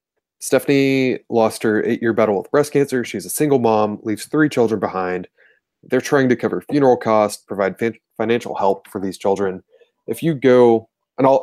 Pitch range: 100-120 Hz